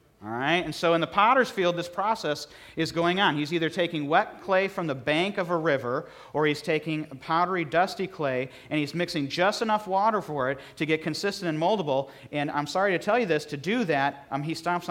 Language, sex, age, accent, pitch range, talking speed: English, male, 40-59, American, 125-170 Hz, 215 wpm